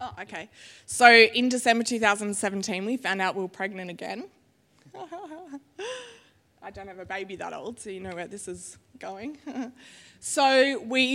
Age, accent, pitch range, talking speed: 20-39, Australian, 195-240 Hz, 155 wpm